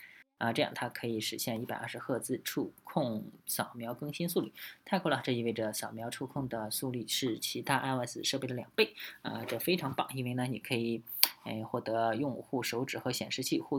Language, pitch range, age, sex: Chinese, 115-135 Hz, 20-39, female